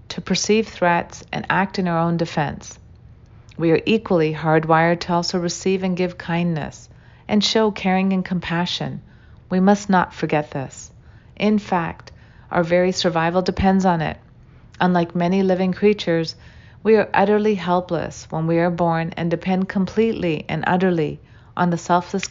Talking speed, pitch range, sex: 155 wpm, 160-195 Hz, female